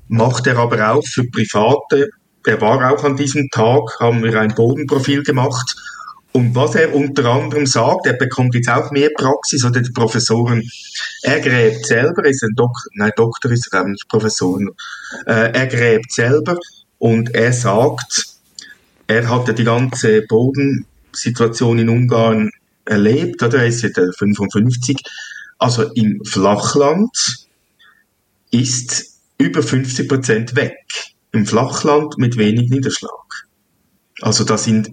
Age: 50-69